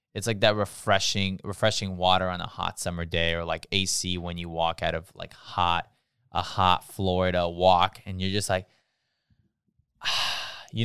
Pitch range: 85-100 Hz